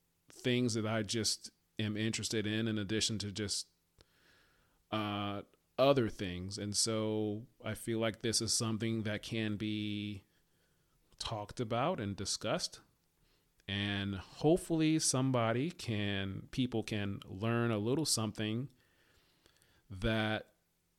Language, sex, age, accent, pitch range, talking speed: English, male, 40-59, American, 100-130 Hz, 115 wpm